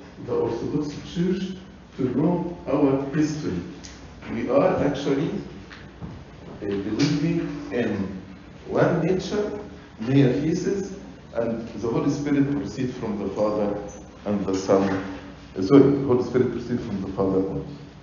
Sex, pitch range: male, 95-140 Hz